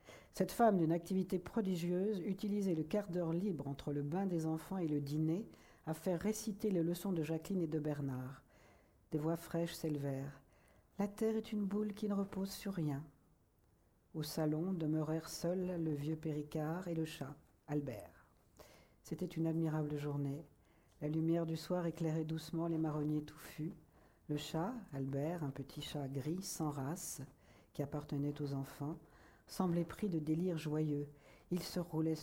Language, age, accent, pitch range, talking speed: French, 60-79, French, 145-175 Hz, 160 wpm